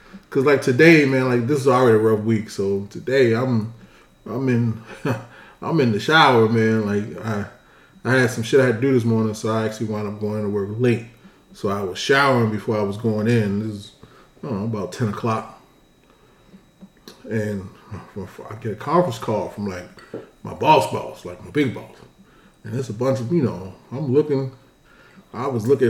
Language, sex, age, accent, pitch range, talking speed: English, male, 20-39, American, 110-155 Hz, 200 wpm